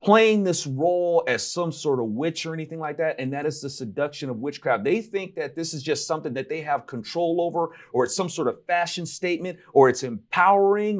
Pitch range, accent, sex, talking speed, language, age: 130-175 Hz, American, male, 225 wpm, English, 40-59